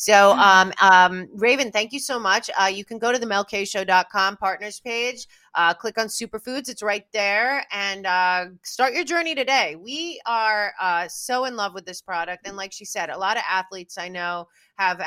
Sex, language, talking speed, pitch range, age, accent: female, English, 200 wpm, 185-230 Hz, 30-49, American